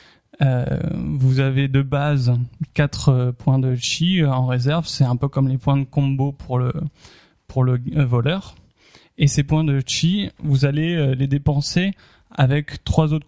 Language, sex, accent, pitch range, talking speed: French, male, French, 130-150 Hz, 175 wpm